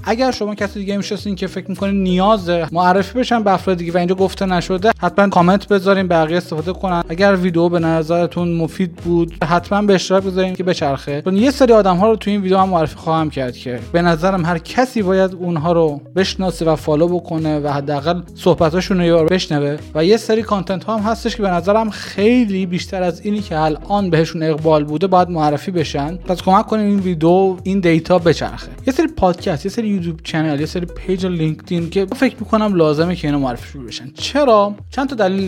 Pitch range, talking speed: 160-200 Hz, 200 wpm